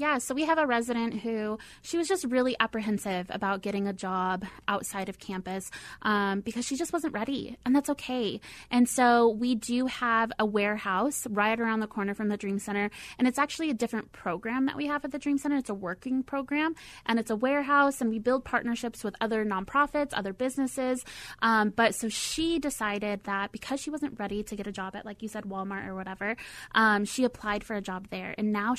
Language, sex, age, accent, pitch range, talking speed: English, female, 20-39, American, 205-255 Hz, 215 wpm